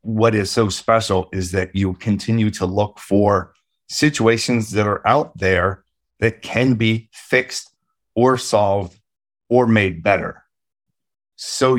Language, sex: English, male